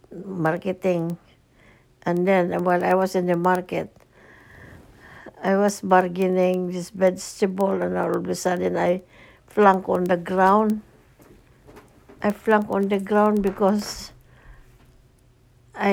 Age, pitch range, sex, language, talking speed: 60-79, 180-220 Hz, female, English, 115 wpm